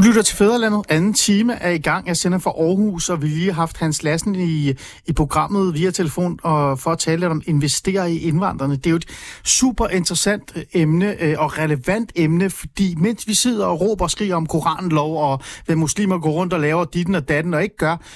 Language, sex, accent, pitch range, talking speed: Danish, male, native, 145-200 Hz, 220 wpm